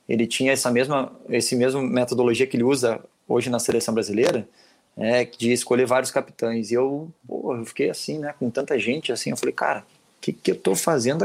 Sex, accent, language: male, Brazilian, Portuguese